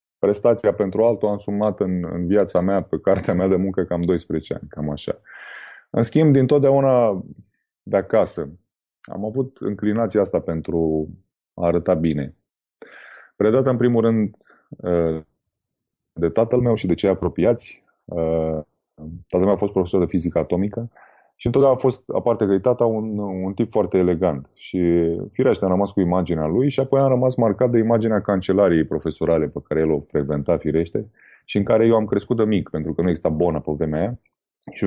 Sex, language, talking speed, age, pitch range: male, Romanian, 170 wpm, 20-39, 85-115 Hz